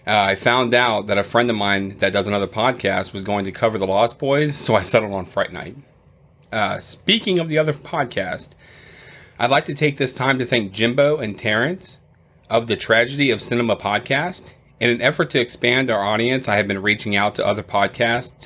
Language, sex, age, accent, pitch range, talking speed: English, male, 30-49, American, 100-130 Hz, 205 wpm